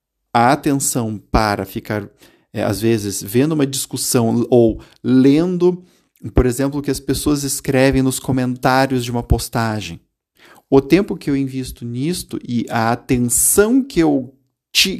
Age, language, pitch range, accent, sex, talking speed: 50-69, Portuguese, 115-155 Hz, Brazilian, male, 130 wpm